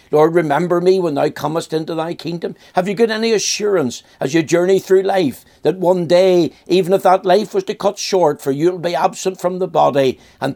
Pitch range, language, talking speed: 150-190 Hz, English, 220 wpm